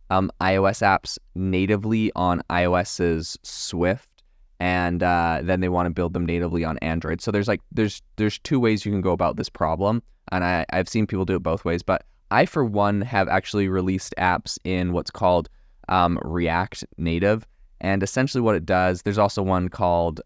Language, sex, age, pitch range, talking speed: English, male, 20-39, 85-100 Hz, 185 wpm